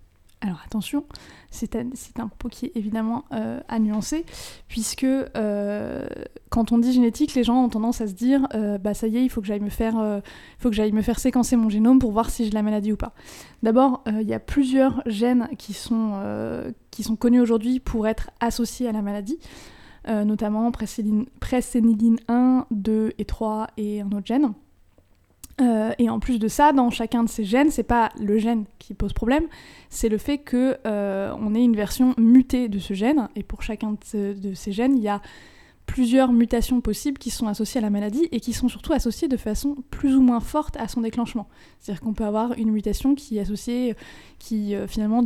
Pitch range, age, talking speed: 215-250 Hz, 20-39, 215 wpm